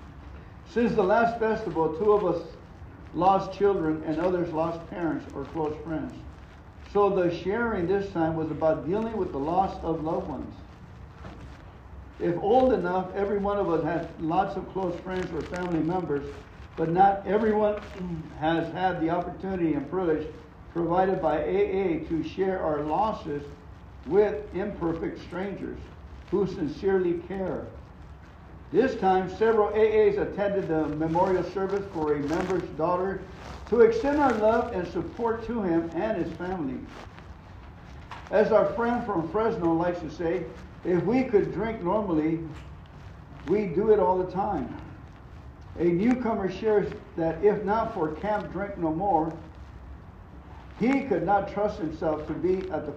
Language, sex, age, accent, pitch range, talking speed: English, male, 60-79, American, 155-200 Hz, 145 wpm